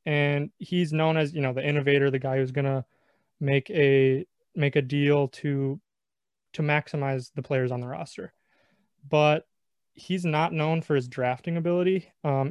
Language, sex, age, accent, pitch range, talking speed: English, male, 20-39, American, 135-160 Hz, 165 wpm